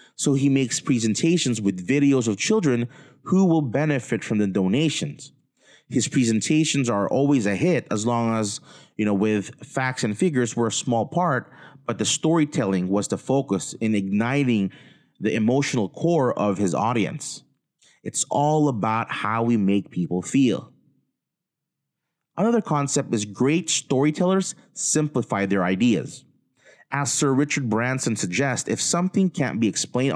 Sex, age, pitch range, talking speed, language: male, 30-49, 110-155 Hz, 145 wpm, English